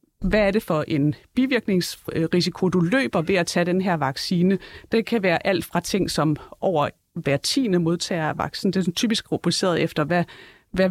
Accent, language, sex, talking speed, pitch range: native, Danish, female, 185 wpm, 165-195 Hz